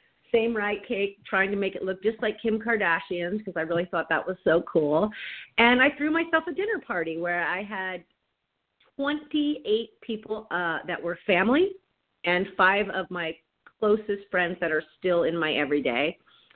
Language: English